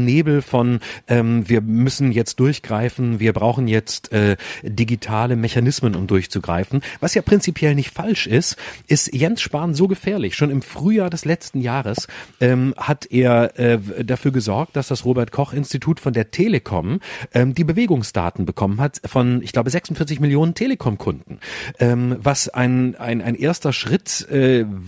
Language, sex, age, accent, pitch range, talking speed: German, male, 40-59, German, 120-150 Hz, 150 wpm